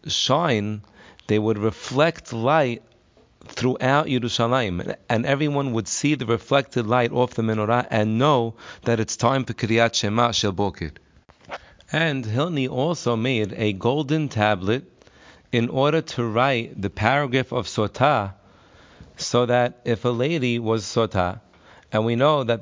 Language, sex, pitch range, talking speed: English, male, 105-130 Hz, 140 wpm